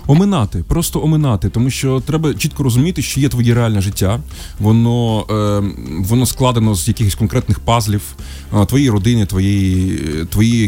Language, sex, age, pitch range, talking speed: Ukrainian, male, 20-39, 100-135 Hz, 135 wpm